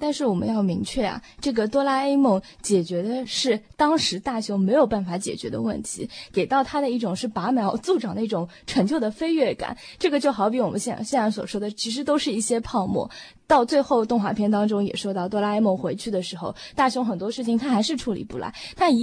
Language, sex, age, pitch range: Chinese, female, 20-39, 200-260 Hz